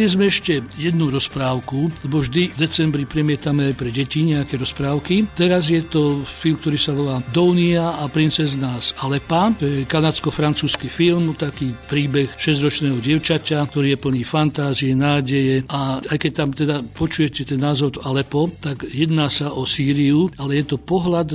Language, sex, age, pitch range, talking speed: Slovak, male, 60-79, 140-160 Hz, 155 wpm